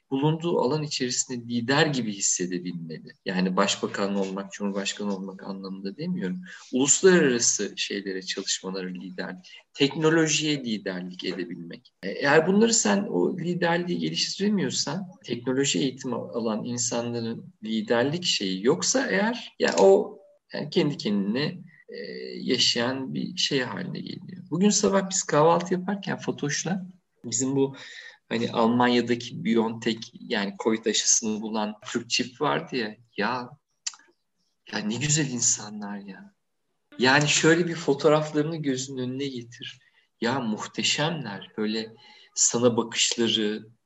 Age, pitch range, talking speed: 50-69, 110-170 Hz, 115 wpm